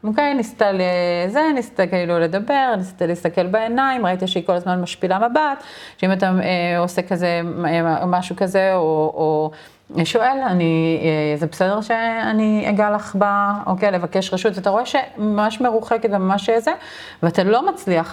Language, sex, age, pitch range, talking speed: Hebrew, female, 30-49, 170-225 Hz, 155 wpm